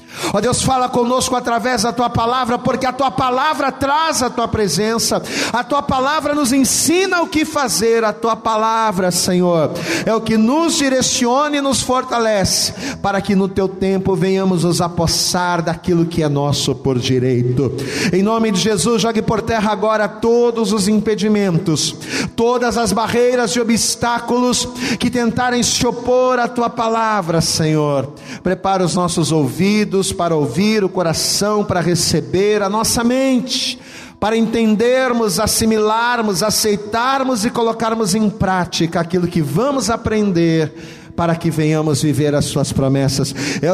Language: Portuguese